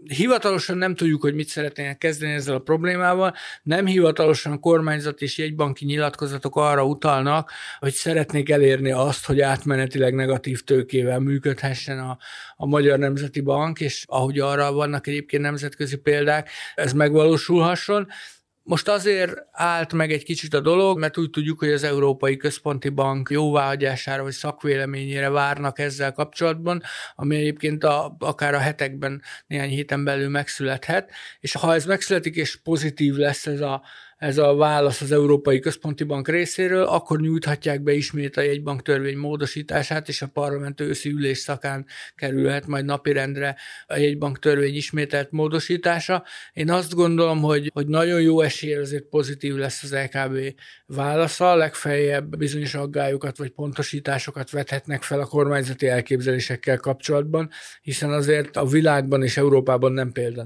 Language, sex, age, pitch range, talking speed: Hungarian, male, 60-79, 140-155 Hz, 145 wpm